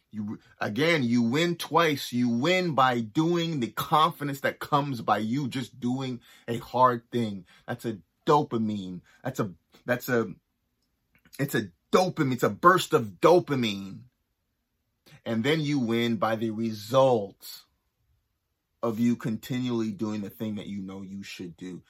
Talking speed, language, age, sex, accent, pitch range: 150 wpm, English, 30-49, male, American, 115-150 Hz